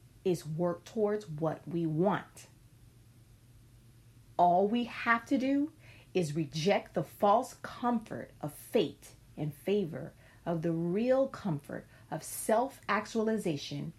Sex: female